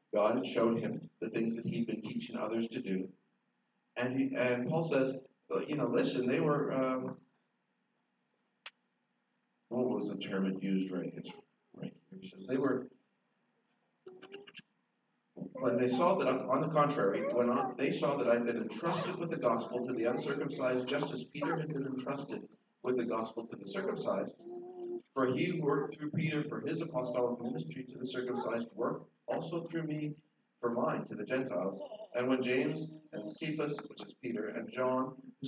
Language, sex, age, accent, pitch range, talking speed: English, male, 50-69, American, 120-160 Hz, 175 wpm